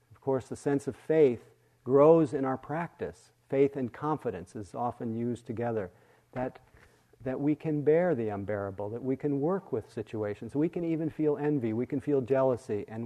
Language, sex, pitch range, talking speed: English, male, 110-135 Hz, 180 wpm